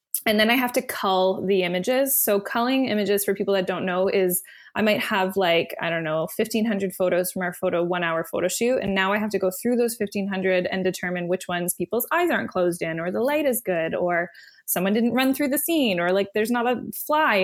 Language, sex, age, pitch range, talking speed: English, female, 20-39, 190-240 Hz, 235 wpm